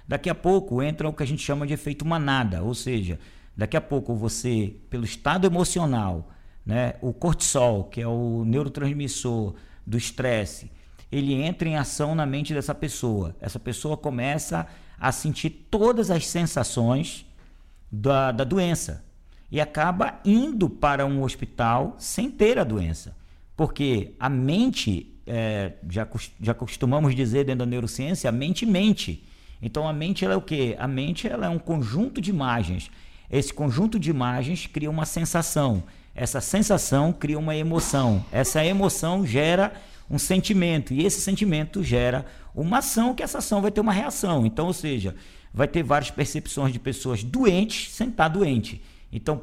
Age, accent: 50-69, Brazilian